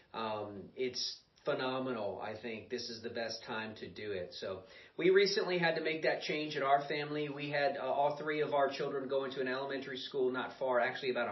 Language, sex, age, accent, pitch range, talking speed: English, male, 40-59, American, 120-145 Hz, 215 wpm